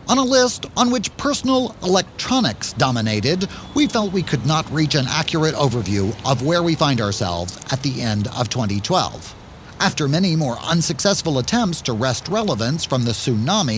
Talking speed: 165 wpm